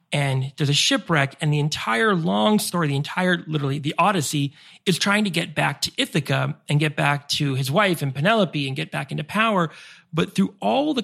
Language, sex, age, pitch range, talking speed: English, male, 30-49, 145-180 Hz, 205 wpm